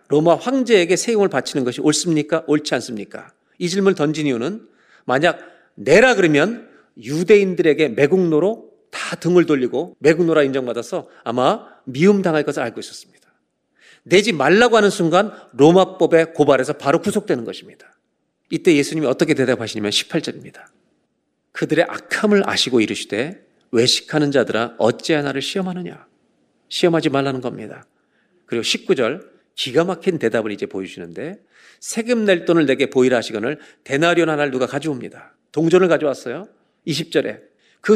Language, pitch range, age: Korean, 135-180 Hz, 40-59